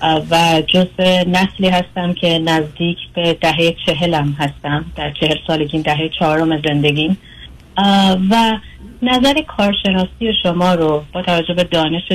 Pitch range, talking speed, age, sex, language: 160-195 Hz, 125 wpm, 30-49, female, Persian